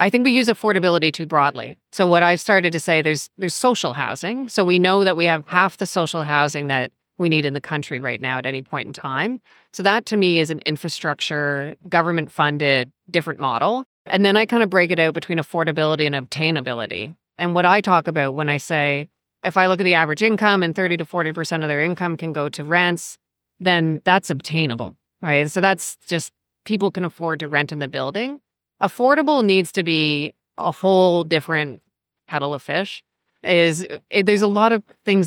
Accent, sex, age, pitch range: American, female, 30-49, 155-190 Hz